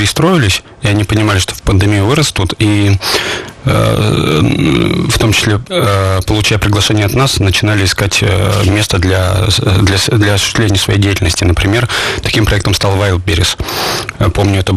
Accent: native